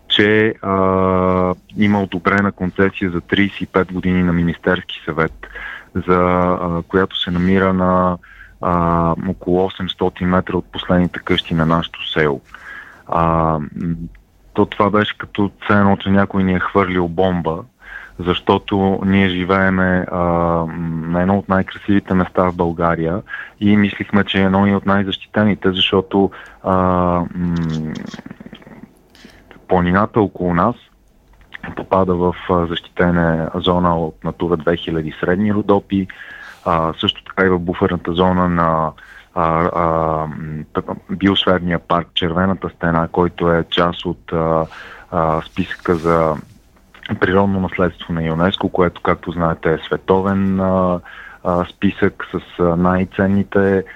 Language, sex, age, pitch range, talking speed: Bulgarian, male, 30-49, 85-95 Hz, 115 wpm